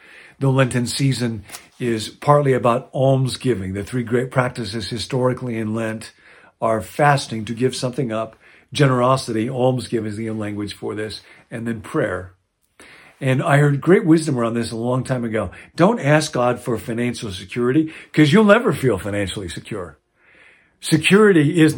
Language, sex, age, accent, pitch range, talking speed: English, male, 50-69, American, 115-135 Hz, 150 wpm